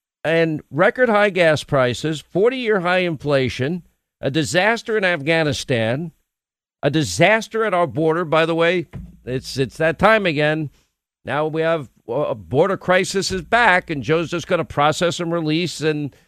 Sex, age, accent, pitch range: male, 50-69, American, 160-205 Hz